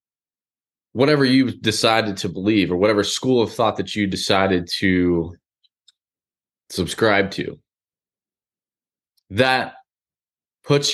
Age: 20-39